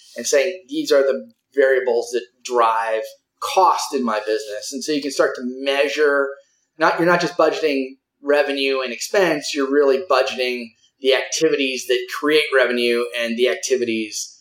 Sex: male